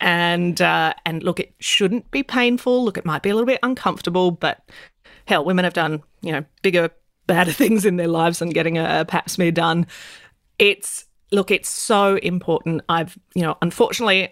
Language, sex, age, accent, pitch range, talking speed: English, female, 30-49, Australian, 160-185 Hz, 185 wpm